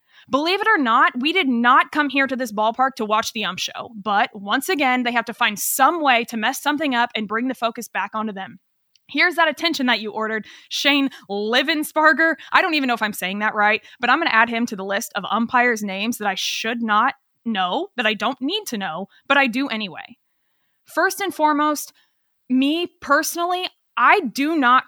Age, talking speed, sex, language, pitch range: 20-39, 215 wpm, female, English, 220-295 Hz